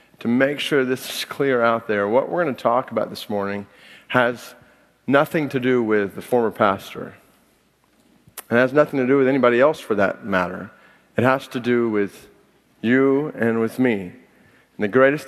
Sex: male